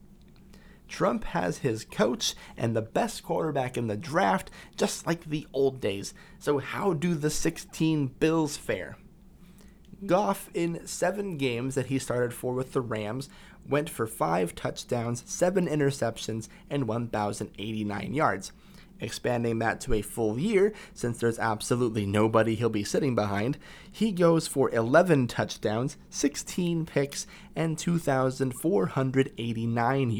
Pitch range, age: 125-190 Hz, 30-49